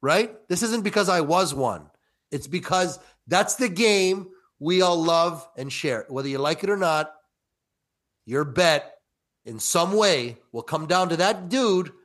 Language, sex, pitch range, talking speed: English, male, 135-185 Hz, 170 wpm